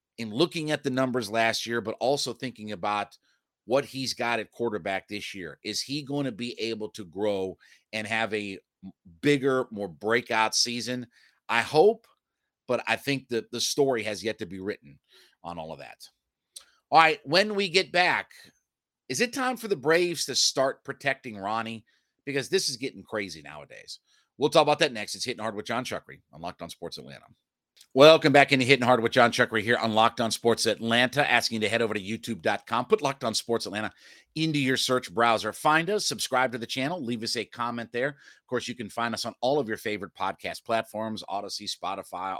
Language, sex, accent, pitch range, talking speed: English, male, American, 105-130 Hz, 205 wpm